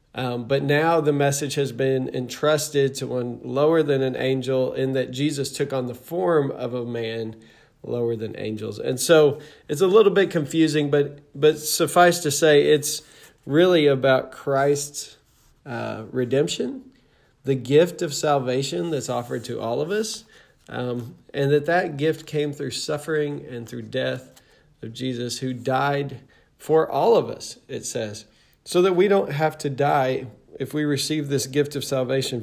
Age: 40-59